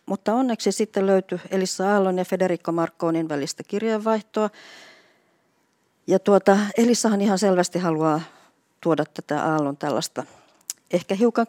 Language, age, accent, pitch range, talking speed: Finnish, 50-69, native, 165-205 Hz, 115 wpm